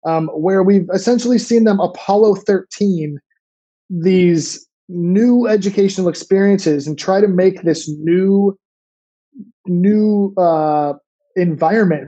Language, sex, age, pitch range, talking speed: English, male, 20-39, 165-205 Hz, 105 wpm